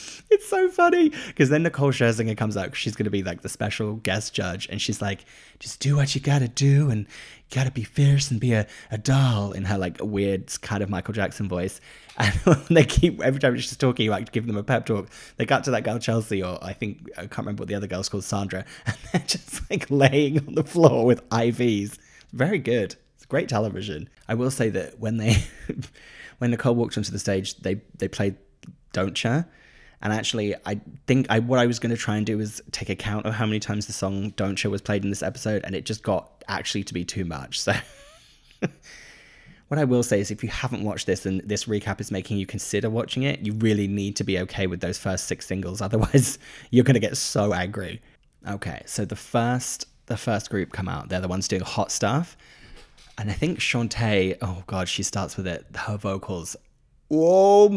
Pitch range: 100-130 Hz